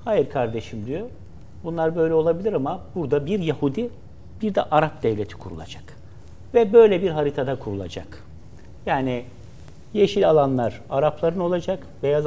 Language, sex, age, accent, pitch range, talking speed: Turkish, male, 60-79, native, 115-190 Hz, 125 wpm